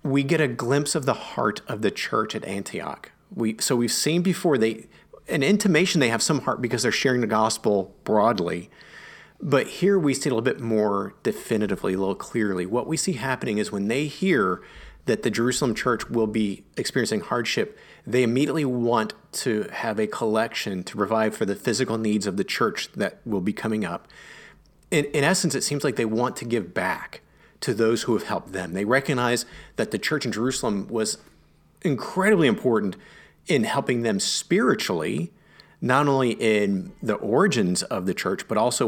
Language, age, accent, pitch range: English, 40-59, American, 105-140 Hz